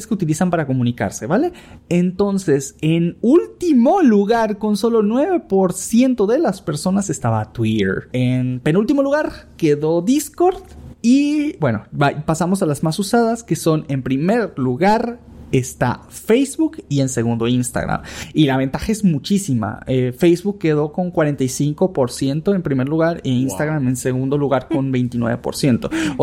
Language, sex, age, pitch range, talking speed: Spanish, male, 30-49, 135-215 Hz, 135 wpm